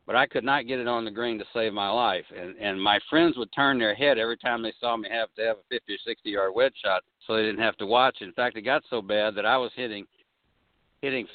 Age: 60-79